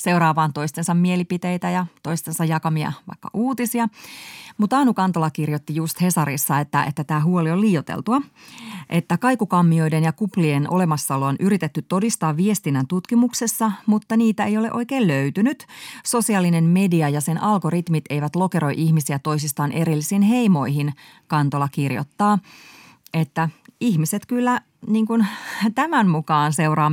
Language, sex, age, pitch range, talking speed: Finnish, female, 30-49, 155-205 Hz, 125 wpm